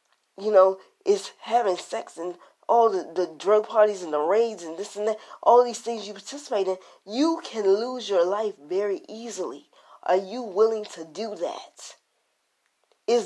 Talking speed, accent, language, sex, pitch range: 170 wpm, American, English, female, 170-220 Hz